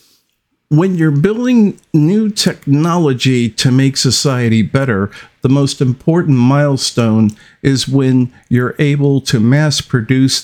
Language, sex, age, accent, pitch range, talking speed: English, male, 50-69, American, 110-145 Hz, 115 wpm